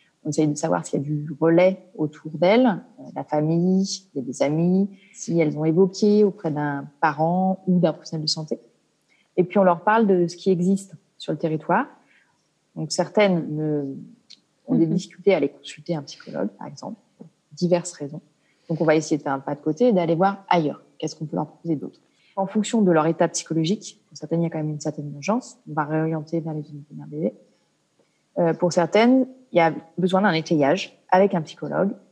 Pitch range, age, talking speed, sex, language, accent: 155-190 Hz, 30-49, 205 wpm, female, French, French